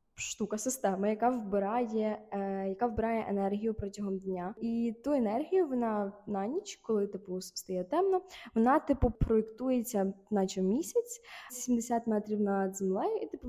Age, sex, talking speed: 20-39, female, 135 wpm